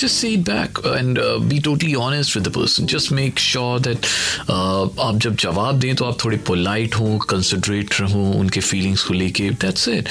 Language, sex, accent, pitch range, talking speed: Hindi, male, native, 90-135 Hz, 245 wpm